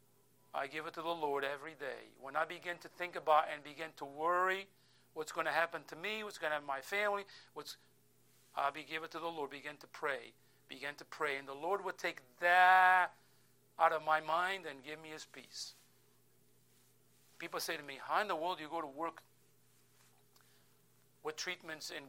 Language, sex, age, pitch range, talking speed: English, male, 50-69, 135-170 Hz, 205 wpm